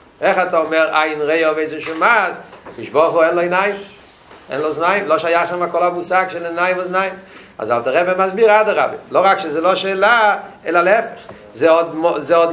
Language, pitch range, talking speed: Hebrew, 200-255 Hz, 175 wpm